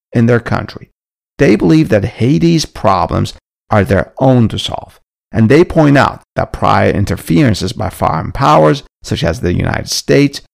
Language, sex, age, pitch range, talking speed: English, male, 50-69, 100-145 Hz, 160 wpm